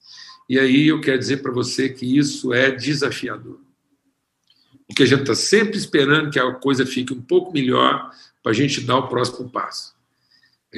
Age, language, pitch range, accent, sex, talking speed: 50-69, Portuguese, 125-150 Hz, Brazilian, male, 180 wpm